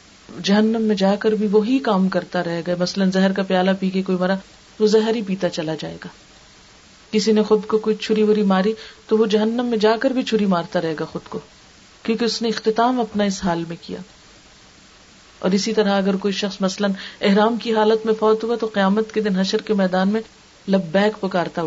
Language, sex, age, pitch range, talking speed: Urdu, female, 40-59, 190-225 Hz, 170 wpm